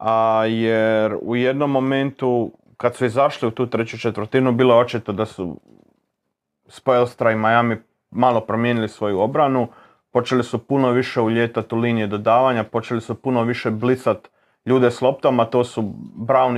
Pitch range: 110-130 Hz